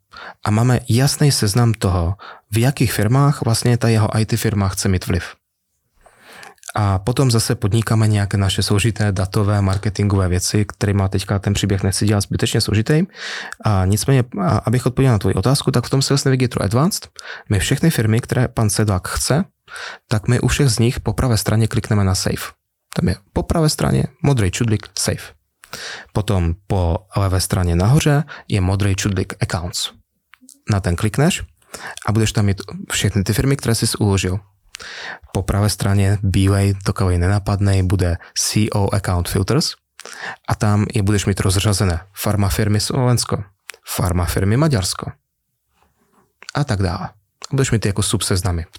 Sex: male